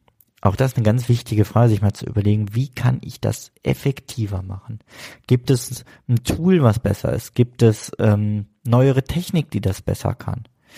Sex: male